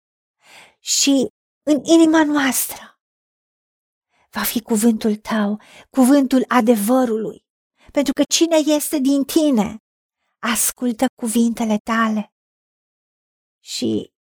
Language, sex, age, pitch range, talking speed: Romanian, female, 50-69, 235-290 Hz, 85 wpm